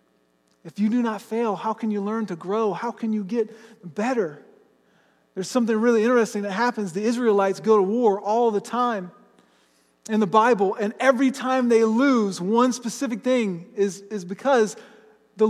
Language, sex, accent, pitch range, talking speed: English, male, American, 200-260 Hz, 175 wpm